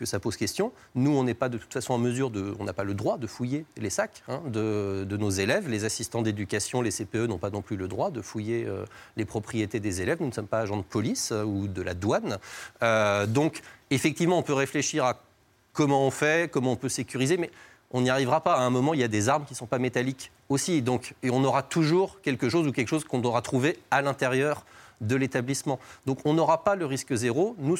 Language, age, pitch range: French, 30-49, 115-150 Hz